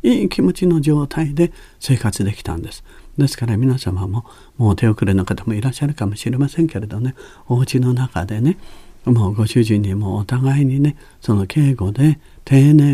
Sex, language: male, Japanese